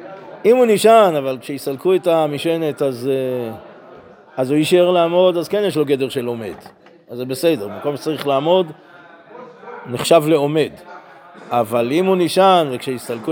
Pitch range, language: 130-170 Hz, Hebrew